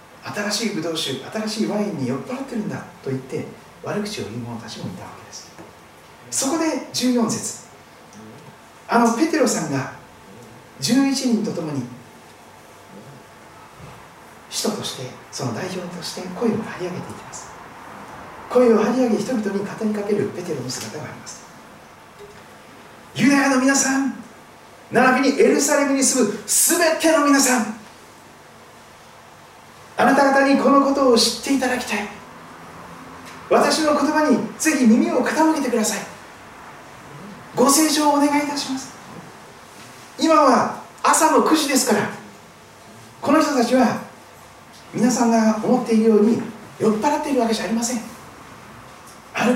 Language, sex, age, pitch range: Japanese, male, 40-59, 215-275 Hz